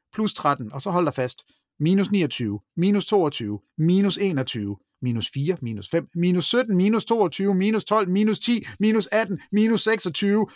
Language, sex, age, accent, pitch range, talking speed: Danish, male, 30-49, native, 135-195 Hz, 165 wpm